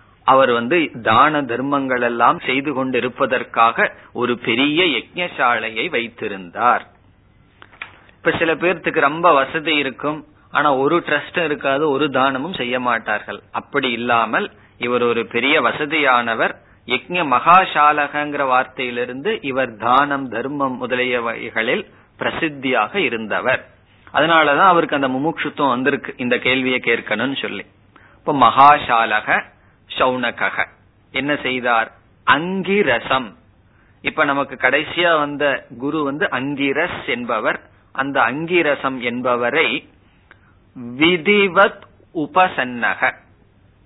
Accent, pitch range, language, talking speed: native, 115-150 Hz, Tamil, 95 wpm